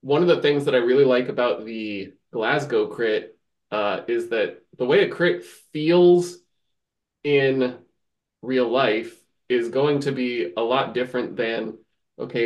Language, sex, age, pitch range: English, male, 20-39, 110-135 Hz